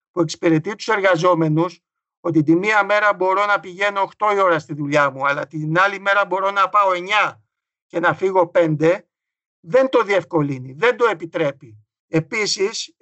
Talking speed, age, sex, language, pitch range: 165 wpm, 60-79, male, Greek, 160-205 Hz